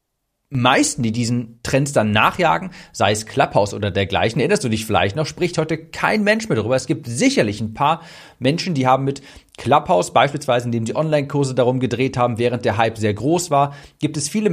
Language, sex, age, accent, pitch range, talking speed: German, male, 40-59, German, 120-160 Hz, 200 wpm